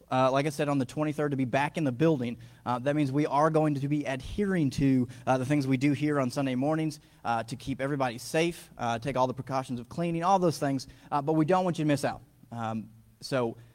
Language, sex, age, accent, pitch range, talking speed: English, male, 30-49, American, 130-160 Hz, 255 wpm